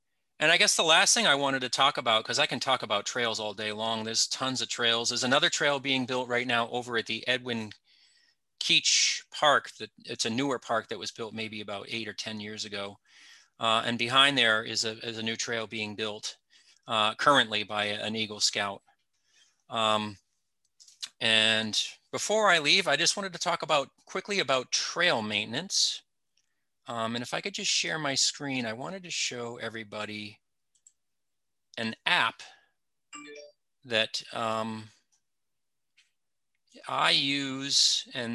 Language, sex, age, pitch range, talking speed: English, male, 30-49, 110-140 Hz, 165 wpm